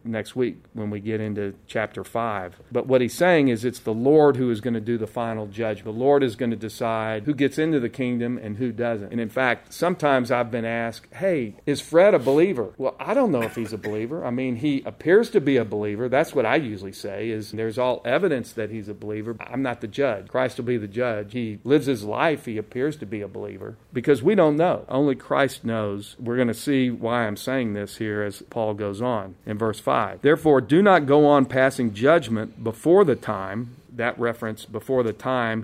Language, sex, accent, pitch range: English, male, American, 110-130 Hz